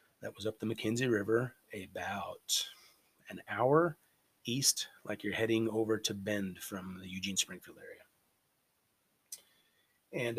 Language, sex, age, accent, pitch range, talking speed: English, male, 30-49, American, 95-110 Hz, 125 wpm